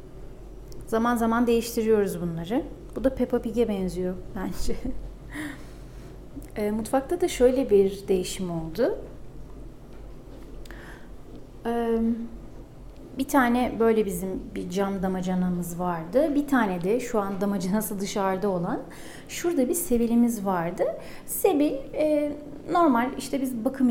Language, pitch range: Turkish, 210-280 Hz